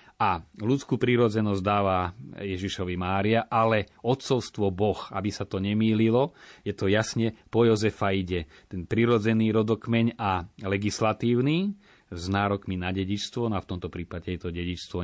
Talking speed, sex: 145 wpm, male